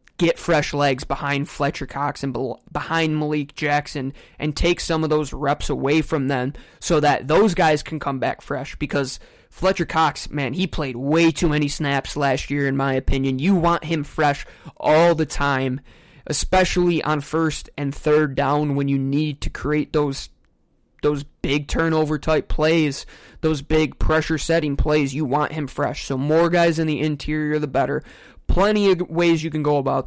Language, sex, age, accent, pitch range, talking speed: English, male, 20-39, American, 140-160 Hz, 180 wpm